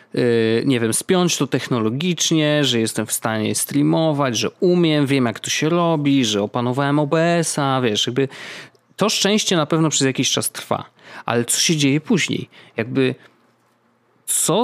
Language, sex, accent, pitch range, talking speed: Polish, male, native, 130-185 Hz, 150 wpm